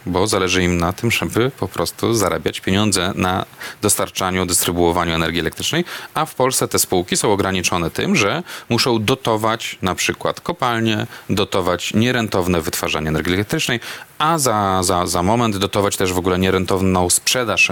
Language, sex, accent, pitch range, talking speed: Polish, male, native, 95-120 Hz, 150 wpm